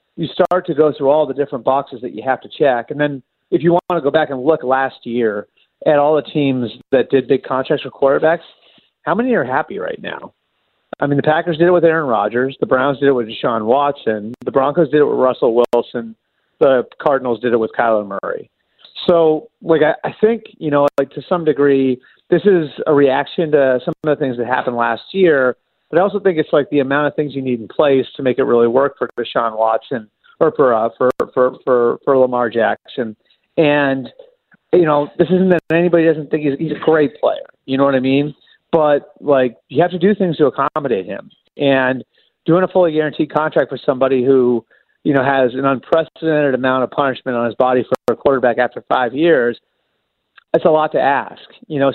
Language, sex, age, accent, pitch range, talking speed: English, male, 40-59, American, 125-160 Hz, 220 wpm